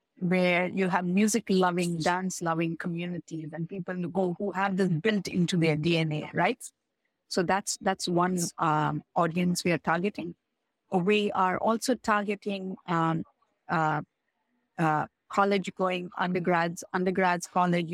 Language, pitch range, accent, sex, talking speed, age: English, 175-205 Hz, Indian, female, 135 wpm, 50-69